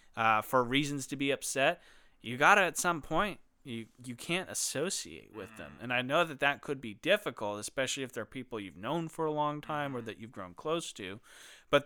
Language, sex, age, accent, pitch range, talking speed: English, male, 30-49, American, 120-145 Hz, 215 wpm